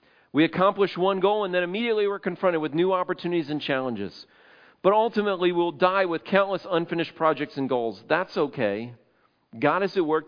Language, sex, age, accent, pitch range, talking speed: English, male, 40-59, American, 120-165 Hz, 175 wpm